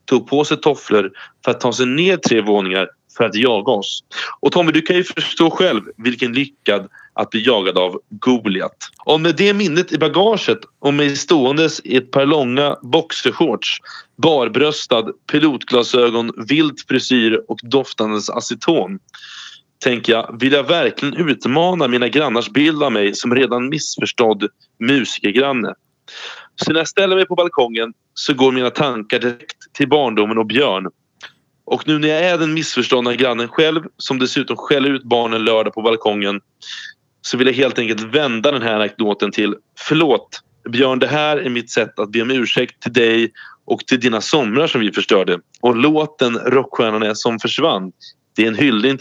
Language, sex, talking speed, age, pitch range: Swedish, male, 170 wpm, 30-49, 115-150 Hz